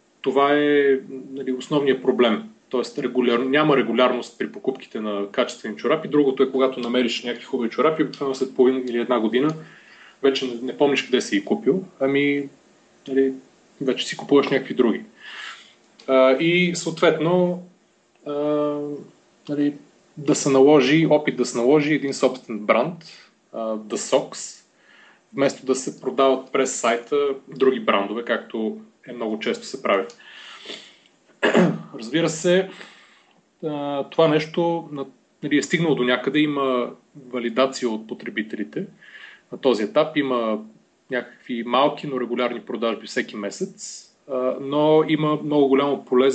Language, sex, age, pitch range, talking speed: Bulgarian, male, 30-49, 125-150 Hz, 130 wpm